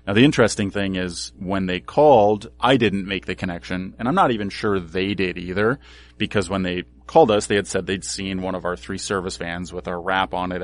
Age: 30-49